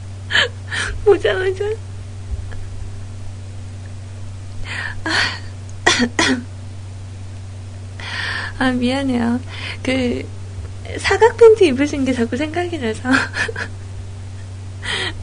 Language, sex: Korean, female